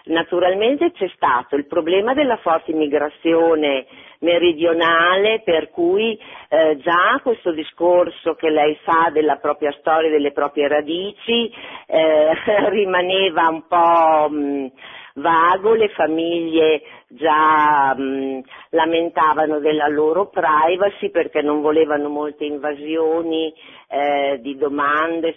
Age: 50-69